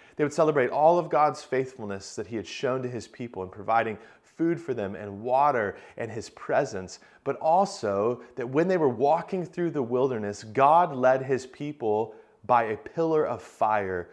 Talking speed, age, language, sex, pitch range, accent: 185 wpm, 30-49, English, male, 110-140 Hz, American